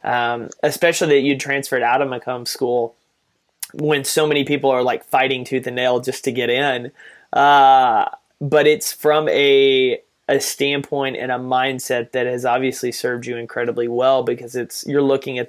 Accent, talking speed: American, 175 wpm